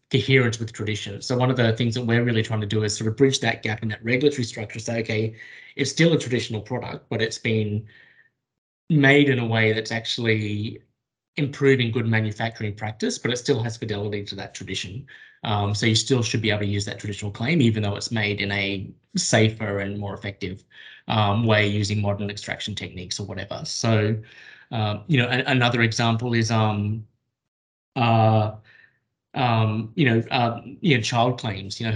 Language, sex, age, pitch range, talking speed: English, male, 20-39, 105-125 Hz, 190 wpm